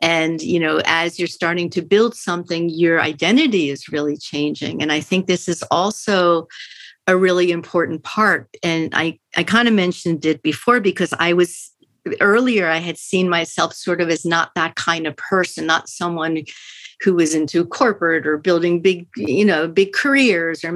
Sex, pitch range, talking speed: female, 165-195 Hz, 180 wpm